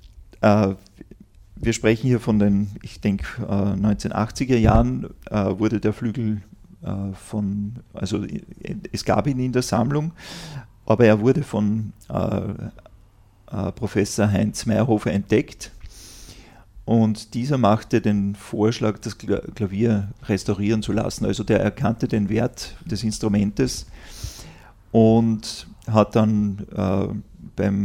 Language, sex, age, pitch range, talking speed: German, male, 40-59, 100-115 Hz, 125 wpm